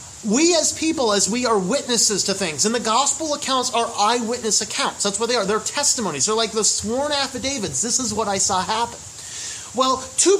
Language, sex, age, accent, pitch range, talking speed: English, male, 30-49, American, 195-260 Hz, 200 wpm